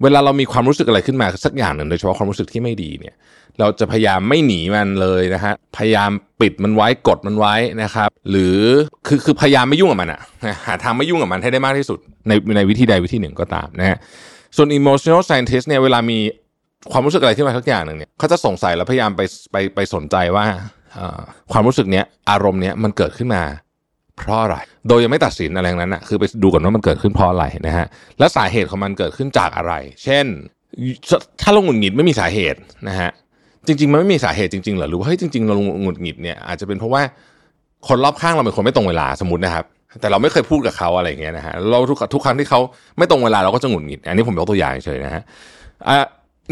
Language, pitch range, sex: Thai, 95-130 Hz, male